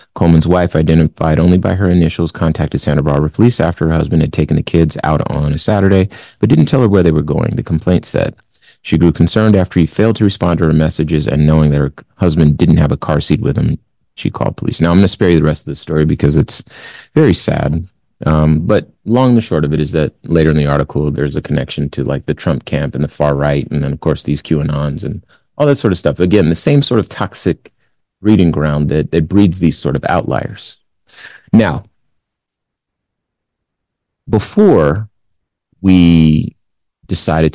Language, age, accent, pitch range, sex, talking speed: English, 30-49, American, 75-95 Hz, male, 210 wpm